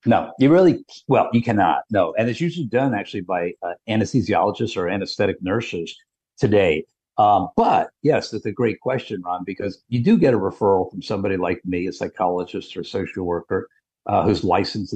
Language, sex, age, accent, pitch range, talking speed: English, male, 50-69, American, 95-115 Hz, 180 wpm